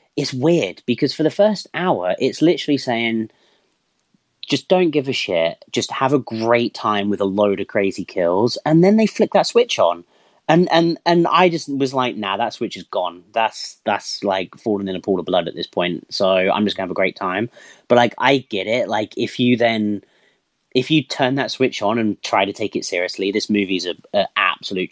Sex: male